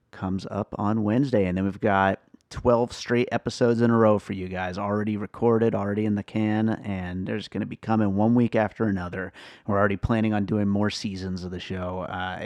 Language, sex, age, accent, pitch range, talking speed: English, male, 30-49, American, 100-120 Hz, 210 wpm